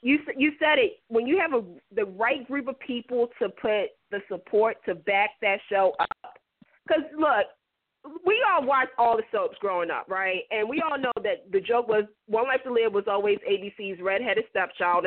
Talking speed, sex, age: 200 wpm, female, 30-49